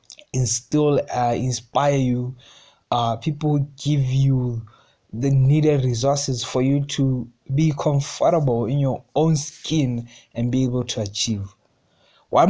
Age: 20-39